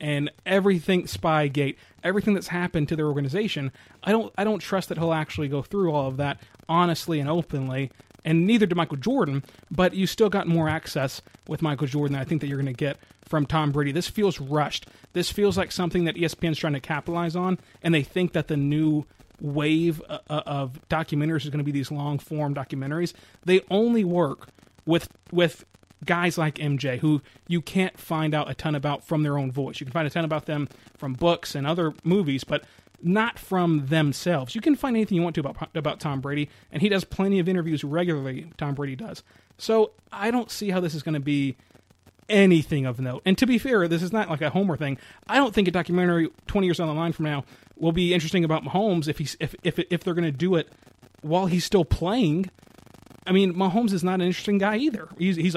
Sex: male